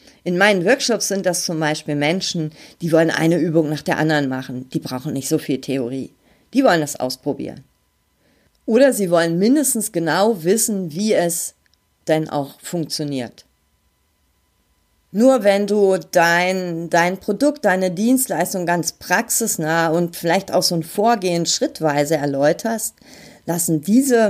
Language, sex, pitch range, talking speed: German, female, 150-205 Hz, 140 wpm